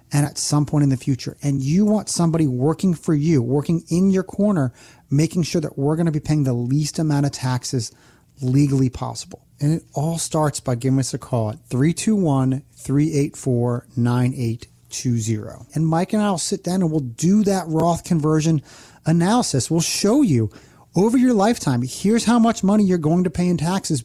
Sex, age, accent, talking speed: male, 30-49, American, 180 wpm